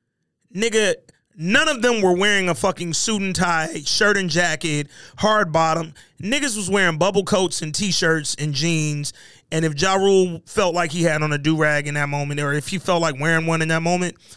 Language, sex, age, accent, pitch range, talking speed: English, male, 30-49, American, 150-205 Hz, 205 wpm